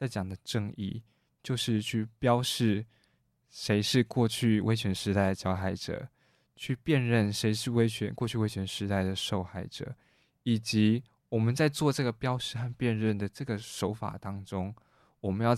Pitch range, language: 105-130 Hz, Chinese